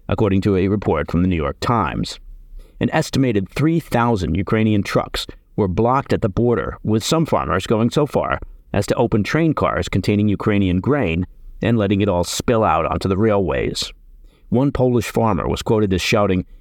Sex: male